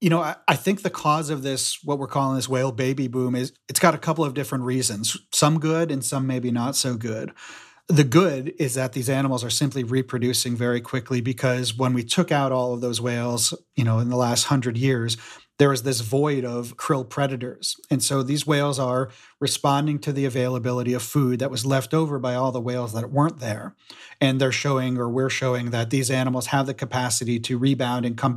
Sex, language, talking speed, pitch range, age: male, English, 220 wpm, 125-145 Hz, 40-59